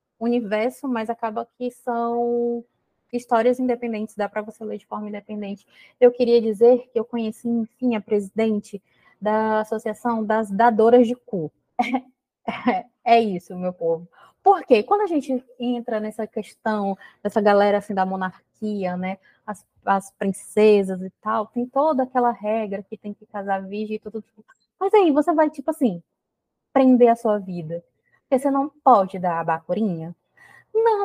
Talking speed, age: 155 wpm, 20-39